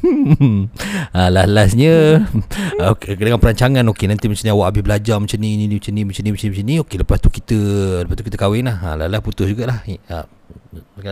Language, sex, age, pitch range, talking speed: Malay, male, 40-59, 90-115 Hz, 210 wpm